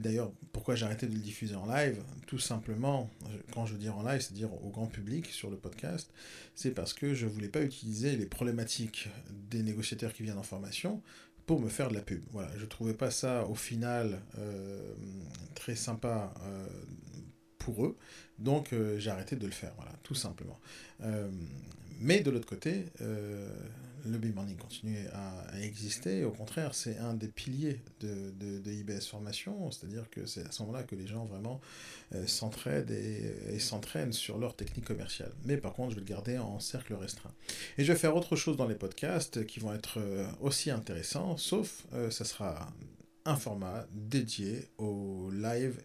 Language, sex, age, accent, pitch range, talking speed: French, male, 40-59, French, 105-130 Hz, 190 wpm